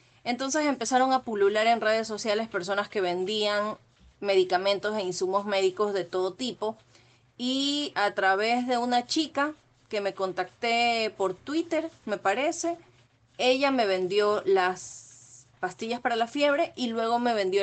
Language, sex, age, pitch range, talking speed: Spanish, female, 30-49, 185-235 Hz, 145 wpm